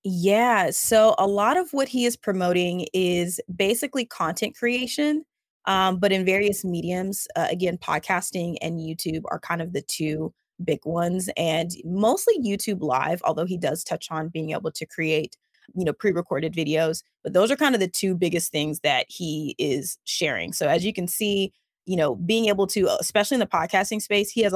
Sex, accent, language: female, American, English